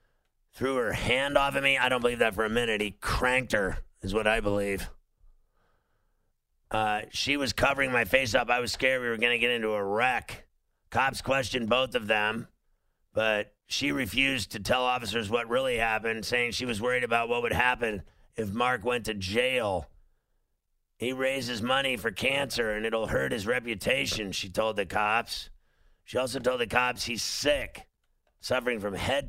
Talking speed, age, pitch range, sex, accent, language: 180 wpm, 50-69, 110-125 Hz, male, American, English